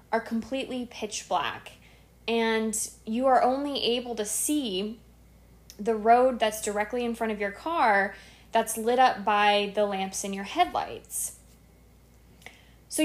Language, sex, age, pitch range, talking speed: English, female, 20-39, 210-250 Hz, 135 wpm